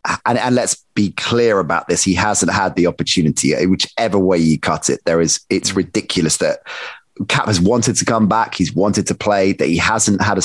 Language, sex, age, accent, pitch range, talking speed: English, male, 30-49, British, 95-130 Hz, 205 wpm